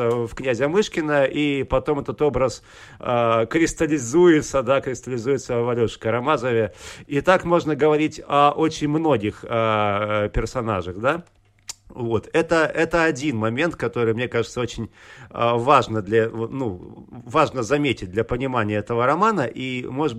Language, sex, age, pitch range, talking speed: Russian, male, 40-59, 115-150 Hz, 130 wpm